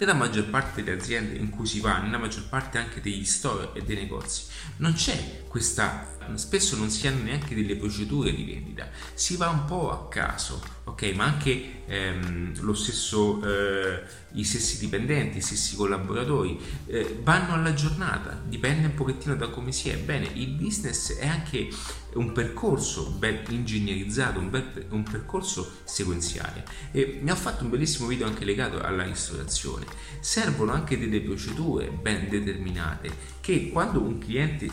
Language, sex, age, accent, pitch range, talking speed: Italian, male, 30-49, native, 85-130 Hz, 160 wpm